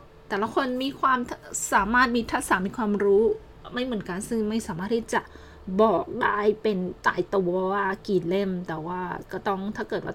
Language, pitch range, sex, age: Thai, 185-220 Hz, female, 20-39